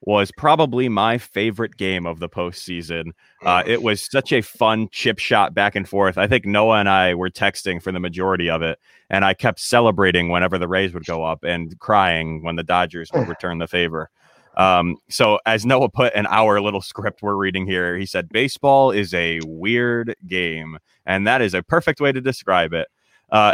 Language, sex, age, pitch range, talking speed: English, male, 20-39, 95-120 Hz, 200 wpm